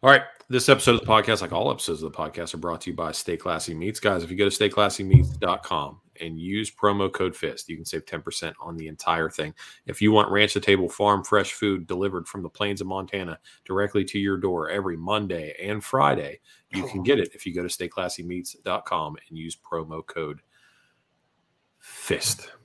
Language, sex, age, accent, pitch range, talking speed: English, male, 30-49, American, 90-120 Hz, 205 wpm